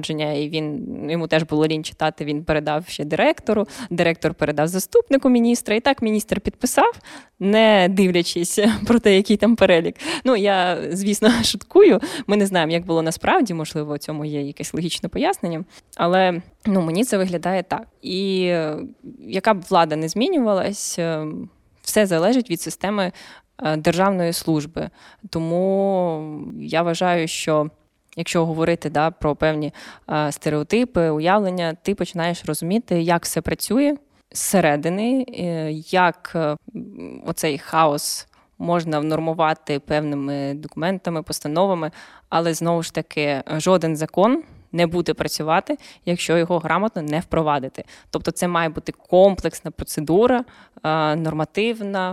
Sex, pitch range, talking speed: female, 155-195 Hz, 125 wpm